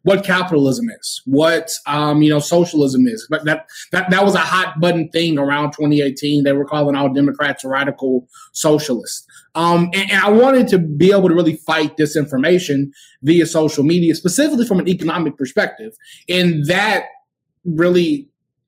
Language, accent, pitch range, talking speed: English, American, 140-165 Hz, 160 wpm